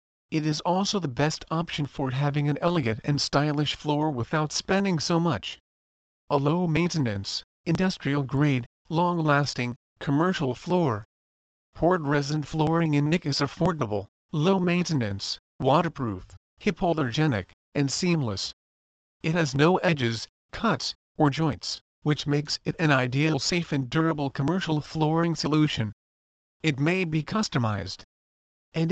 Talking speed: 120 wpm